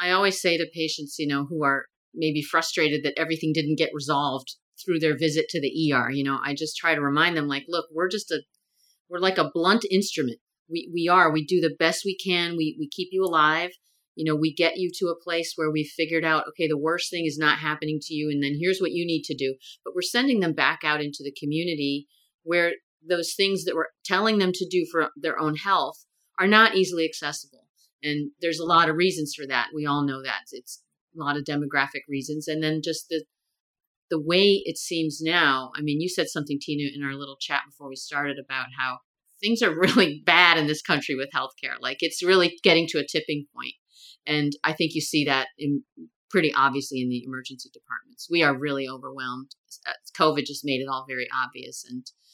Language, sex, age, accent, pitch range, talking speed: English, female, 40-59, American, 145-170 Hz, 220 wpm